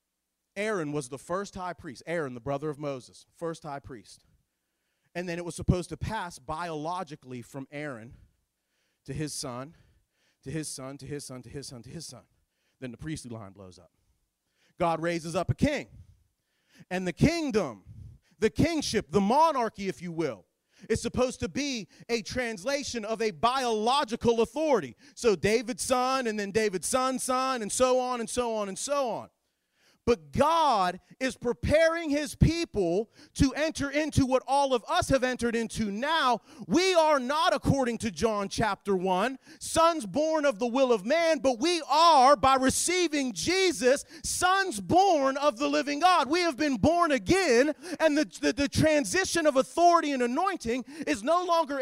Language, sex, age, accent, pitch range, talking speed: English, male, 40-59, American, 175-290 Hz, 170 wpm